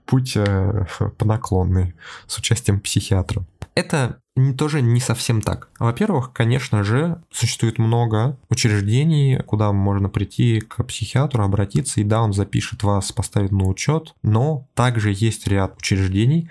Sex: male